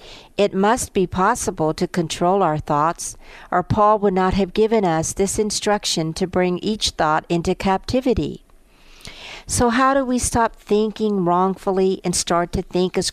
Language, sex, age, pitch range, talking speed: English, female, 50-69, 170-210 Hz, 160 wpm